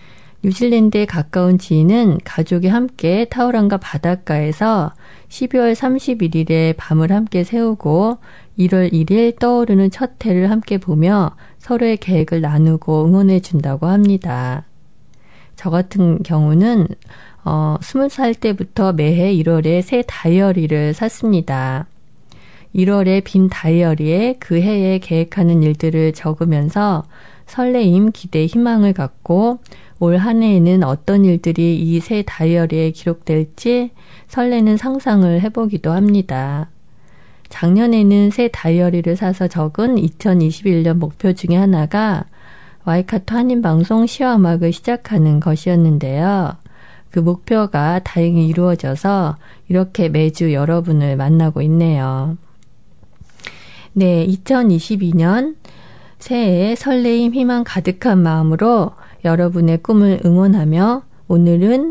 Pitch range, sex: 165-215 Hz, female